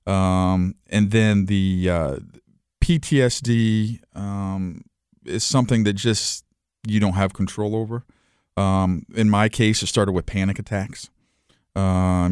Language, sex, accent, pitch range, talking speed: English, male, American, 90-105 Hz, 125 wpm